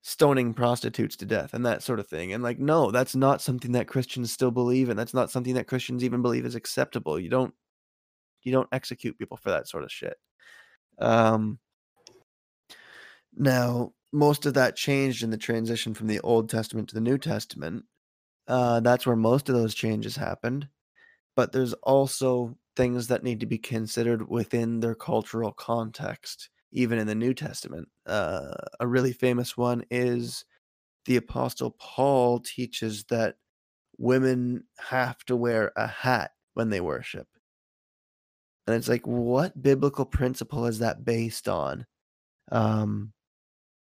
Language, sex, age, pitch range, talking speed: English, male, 20-39, 115-130 Hz, 155 wpm